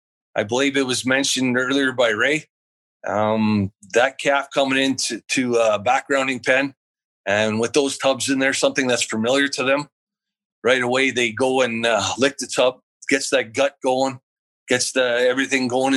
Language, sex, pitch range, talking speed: English, male, 115-140 Hz, 170 wpm